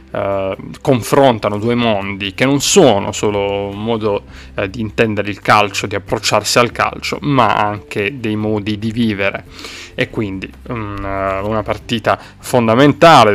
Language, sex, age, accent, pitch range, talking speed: Italian, male, 30-49, native, 100-115 Hz, 140 wpm